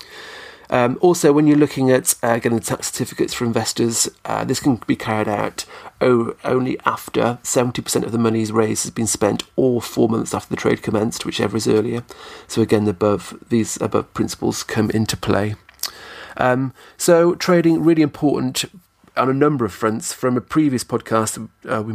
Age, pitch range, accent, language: 40-59, 105-125 Hz, British, English